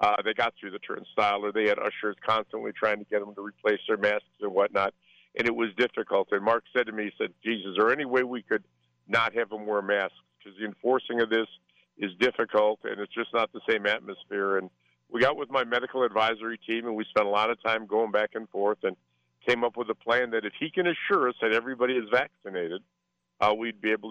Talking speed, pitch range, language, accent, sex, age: 240 wpm, 105-125 Hz, English, American, male, 50-69